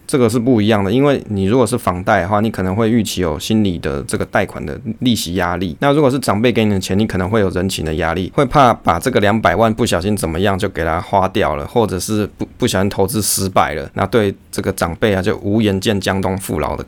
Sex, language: male, Chinese